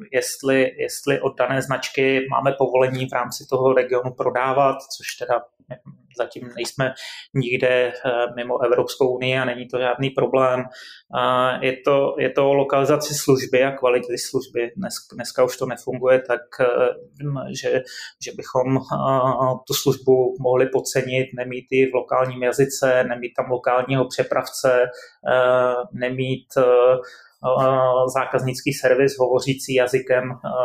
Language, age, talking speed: Slovak, 20-39, 115 wpm